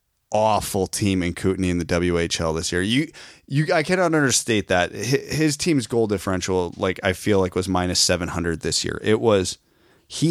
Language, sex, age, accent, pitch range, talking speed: English, male, 30-49, American, 95-120 Hz, 180 wpm